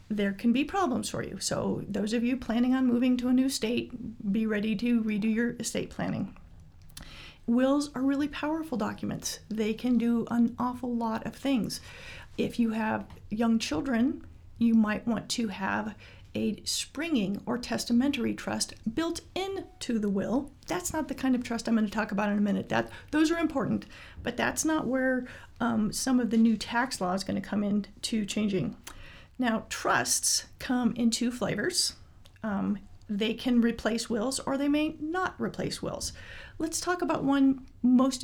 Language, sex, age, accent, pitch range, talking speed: English, female, 40-59, American, 215-260 Hz, 180 wpm